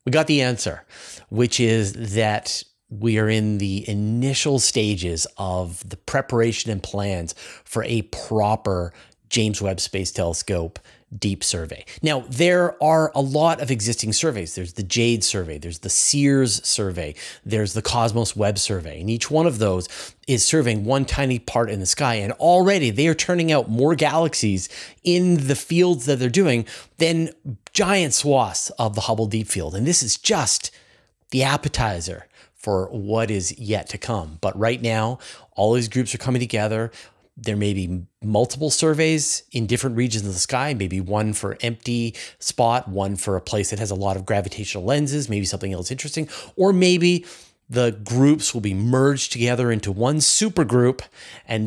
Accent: American